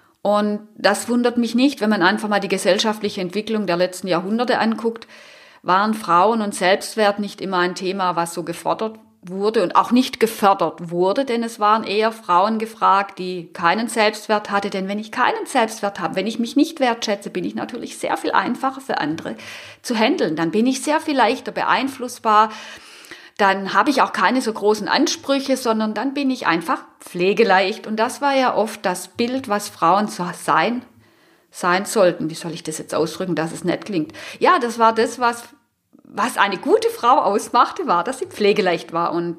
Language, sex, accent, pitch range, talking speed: German, female, German, 185-235 Hz, 190 wpm